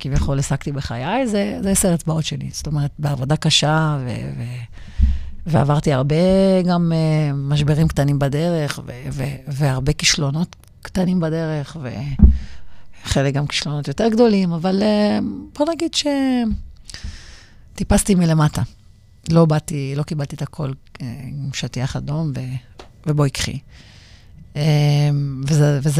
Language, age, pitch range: Hebrew, 50-69, 135-165 Hz